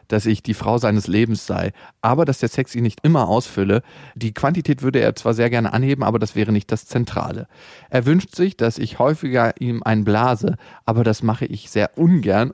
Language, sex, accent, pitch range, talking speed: German, male, German, 110-135 Hz, 205 wpm